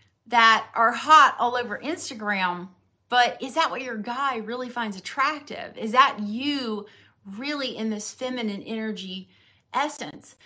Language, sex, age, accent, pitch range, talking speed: English, female, 30-49, American, 215-270 Hz, 140 wpm